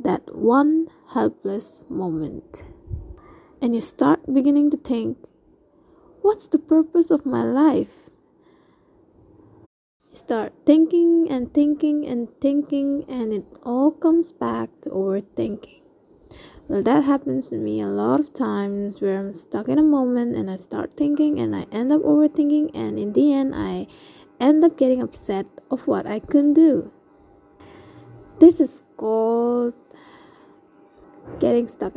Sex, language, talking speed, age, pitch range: female, English, 135 wpm, 20-39, 210-310 Hz